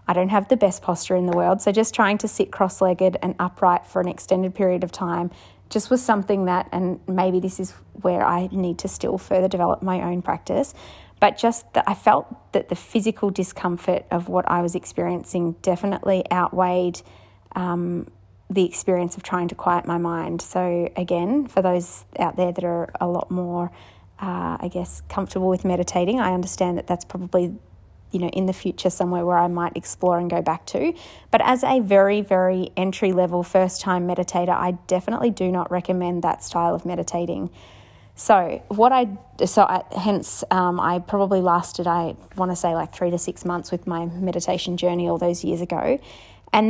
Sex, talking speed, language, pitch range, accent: female, 190 wpm, English, 175-190 Hz, Australian